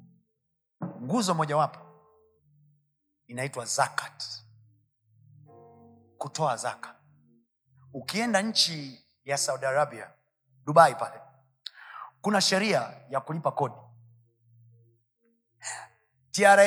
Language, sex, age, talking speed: Swahili, male, 30-49, 70 wpm